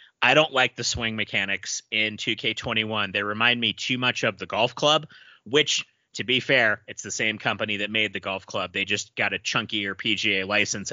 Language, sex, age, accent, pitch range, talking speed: English, male, 30-49, American, 110-150 Hz, 205 wpm